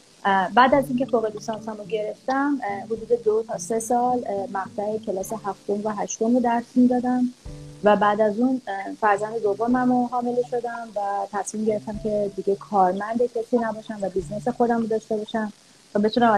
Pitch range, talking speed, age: 195-235 Hz, 160 wpm, 30-49